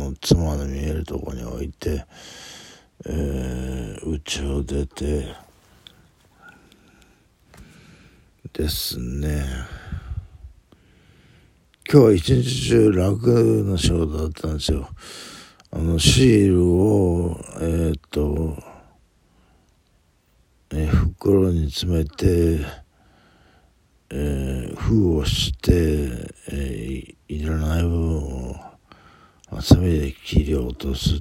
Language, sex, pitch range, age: Japanese, male, 70-90 Hz, 60-79